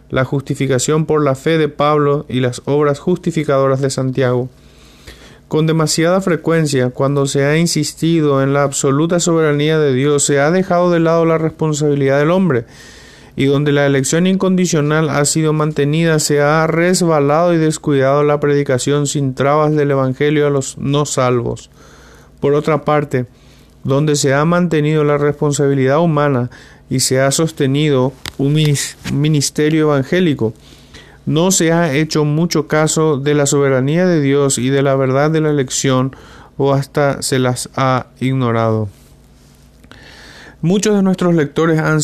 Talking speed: 150 wpm